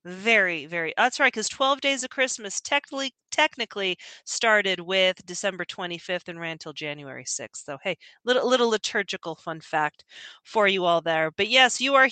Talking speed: 175 wpm